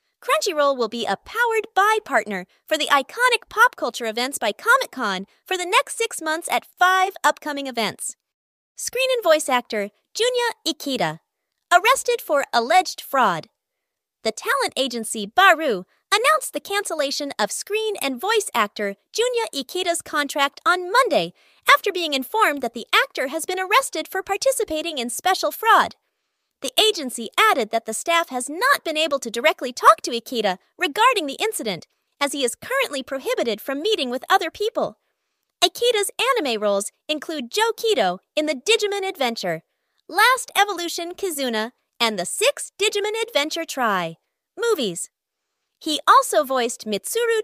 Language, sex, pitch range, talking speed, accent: English, female, 250-420 Hz, 150 wpm, American